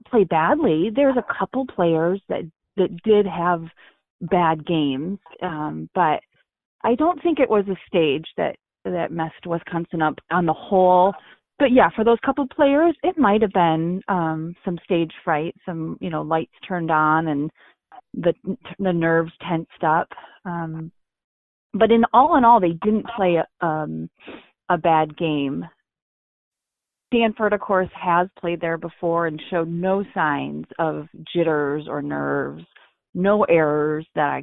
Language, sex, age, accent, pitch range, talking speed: English, female, 30-49, American, 155-210 Hz, 155 wpm